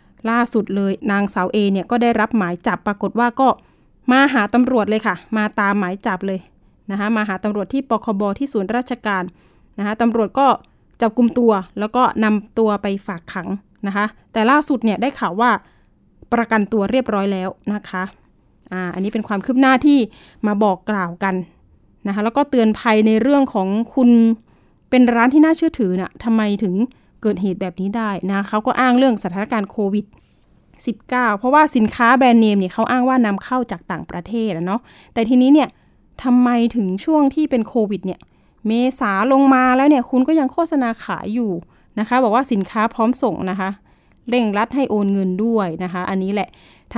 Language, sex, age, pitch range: Thai, female, 20-39, 200-245 Hz